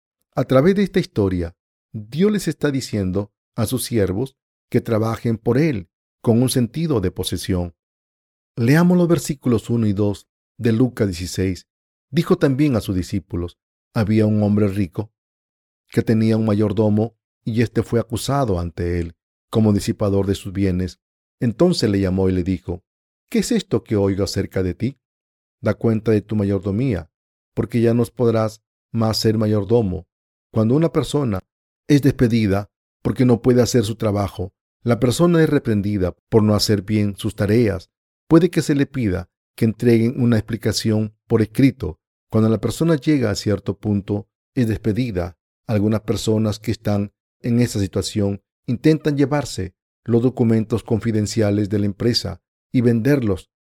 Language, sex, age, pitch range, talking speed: Spanish, male, 40-59, 100-125 Hz, 155 wpm